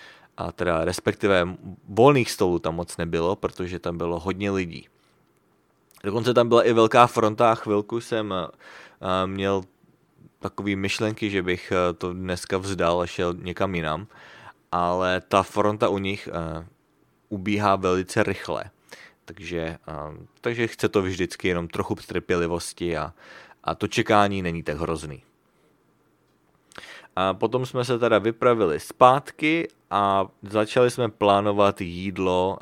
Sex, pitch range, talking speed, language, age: male, 90-110 Hz, 125 wpm, English, 20-39